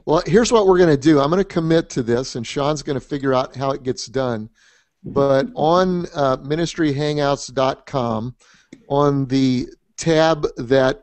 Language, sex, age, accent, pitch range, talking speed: English, male, 50-69, American, 120-145 Hz, 170 wpm